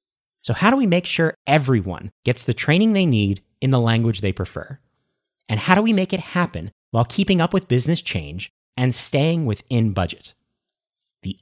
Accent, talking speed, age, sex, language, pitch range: American, 185 wpm, 30-49, male, English, 105-155 Hz